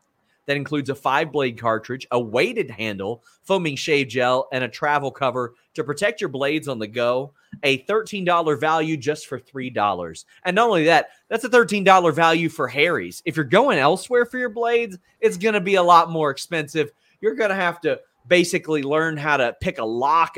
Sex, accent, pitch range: male, American, 120-165 Hz